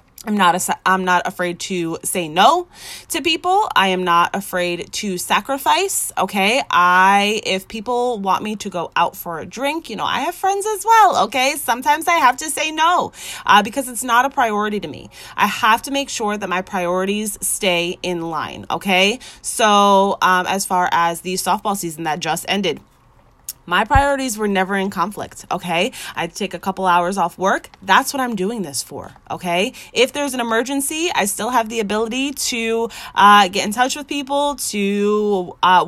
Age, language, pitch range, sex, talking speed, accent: 20-39, English, 180-250 Hz, female, 185 wpm, American